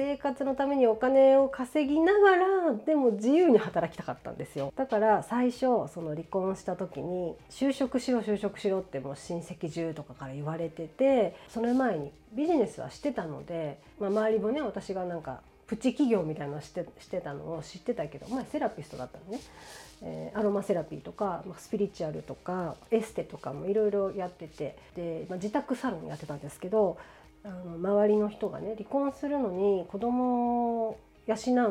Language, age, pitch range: Japanese, 40-59, 170-245 Hz